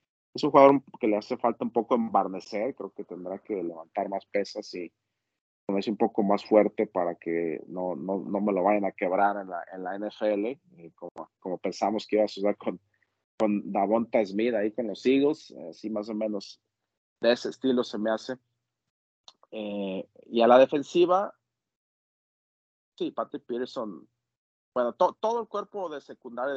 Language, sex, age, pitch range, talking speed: Spanish, male, 40-59, 95-120 Hz, 180 wpm